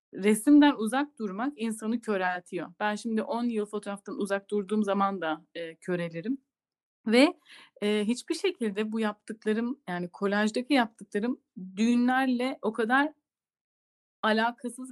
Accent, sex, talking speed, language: native, female, 115 wpm, Turkish